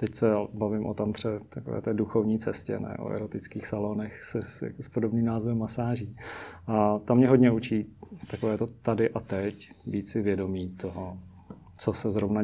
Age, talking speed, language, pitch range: 30-49, 165 wpm, Czech, 100-115 Hz